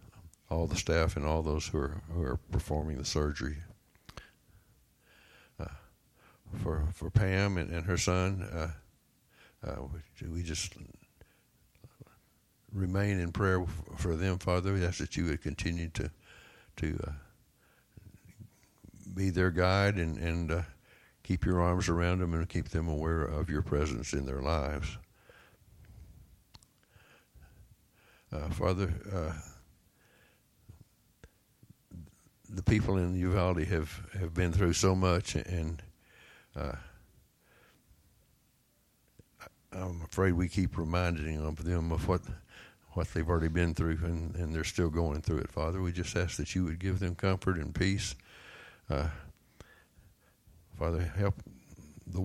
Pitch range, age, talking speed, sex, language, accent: 80-95 Hz, 60-79, 130 wpm, male, English, American